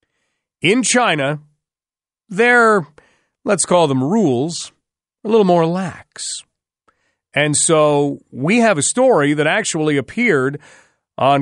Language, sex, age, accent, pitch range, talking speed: English, male, 40-59, American, 145-200 Hz, 110 wpm